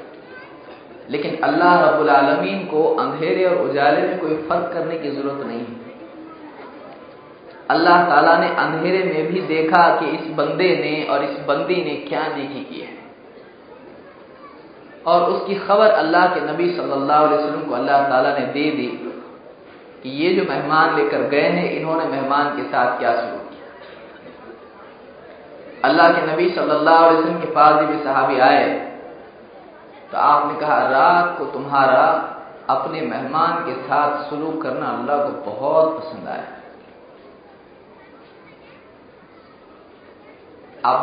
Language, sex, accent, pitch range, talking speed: Hindi, male, native, 150-185 Hz, 130 wpm